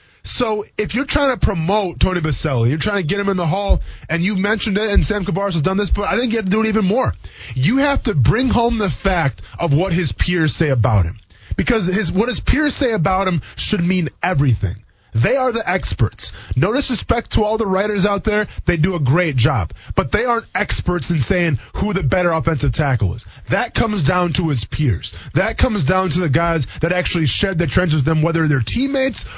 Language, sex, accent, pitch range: English, male, American, 140-215 Hz